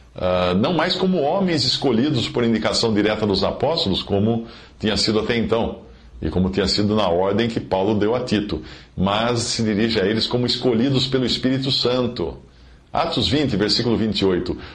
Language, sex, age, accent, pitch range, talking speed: Portuguese, male, 50-69, Brazilian, 90-130 Hz, 165 wpm